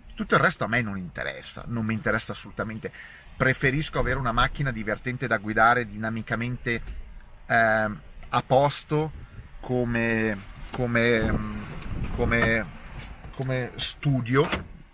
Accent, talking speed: native, 110 wpm